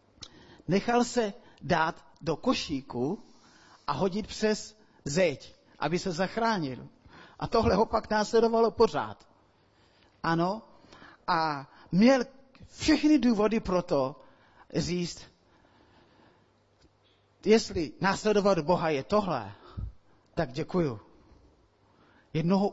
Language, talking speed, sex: Czech, 90 wpm, male